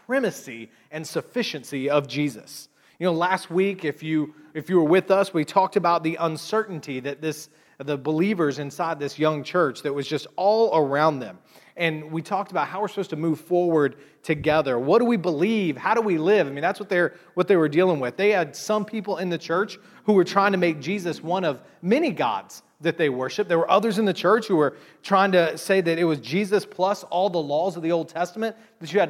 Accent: American